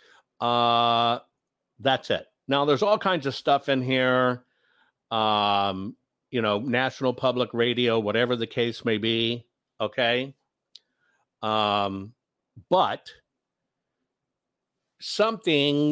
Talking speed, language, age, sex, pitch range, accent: 100 wpm, English, 50-69, male, 115-140 Hz, American